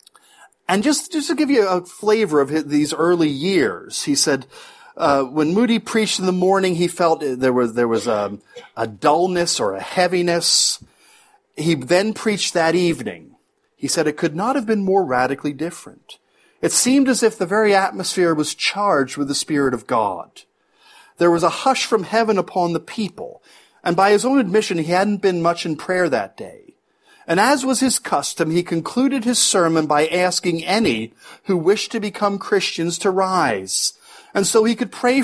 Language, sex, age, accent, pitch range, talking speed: English, male, 40-59, American, 165-240 Hz, 185 wpm